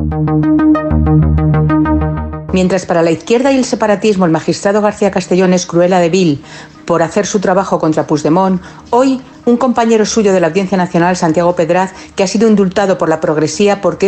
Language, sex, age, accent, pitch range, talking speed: Spanish, female, 50-69, Spanish, 160-210 Hz, 165 wpm